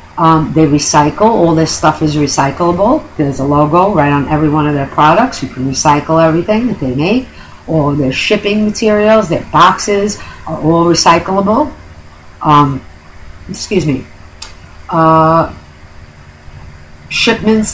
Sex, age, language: female, 50-69, English